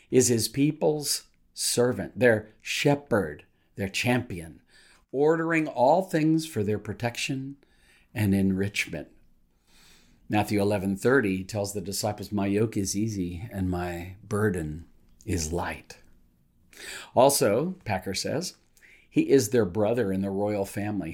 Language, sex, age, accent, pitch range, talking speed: English, male, 50-69, American, 95-120 Hz, 115 wpm